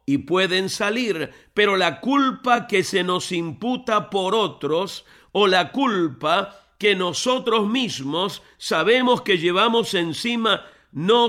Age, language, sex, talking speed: 50-69, Spanish, male, 120 wpm